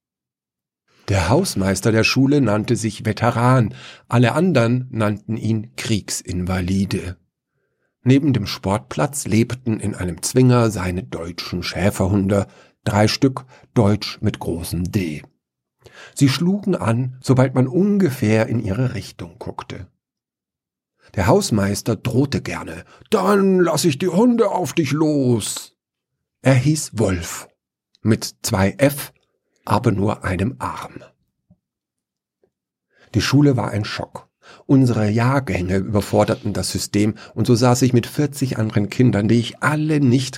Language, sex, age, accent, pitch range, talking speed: German, male, 50-69, German, 100-130 Hz, 120 wpm